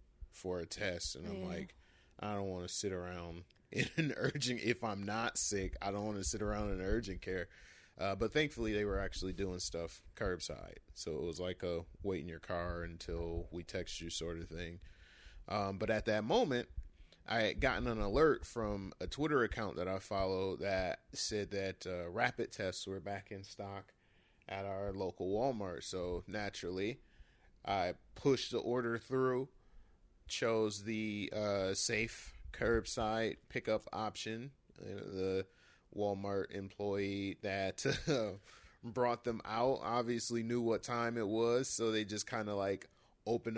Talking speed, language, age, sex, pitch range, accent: 165 wpm, English, 30-49, male, 95-115 Hz, American